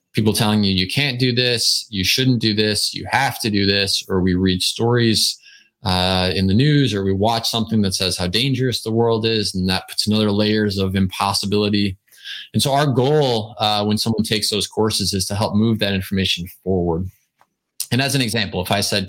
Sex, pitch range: male, 95-115 Hz